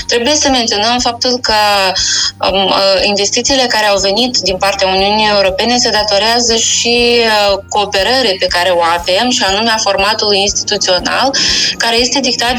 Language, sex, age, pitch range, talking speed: Romanian, female, 20-39, 200-240 Hz, 135 wpm